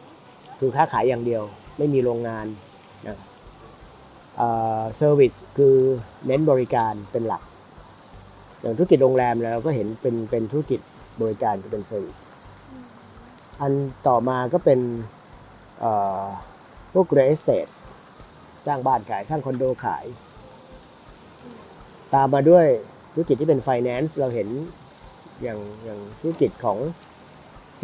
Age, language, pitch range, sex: 30-49, Thai, 115-145 Hz, male